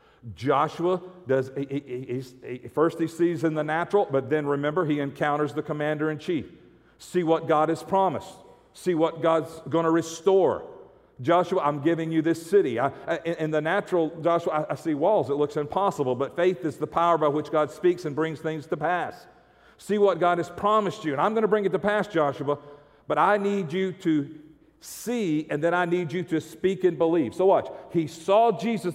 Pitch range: 150-190 Hz